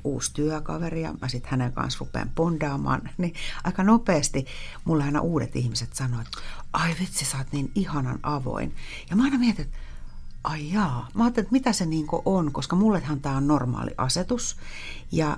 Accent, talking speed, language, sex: native, 180 wpm, Finnish, female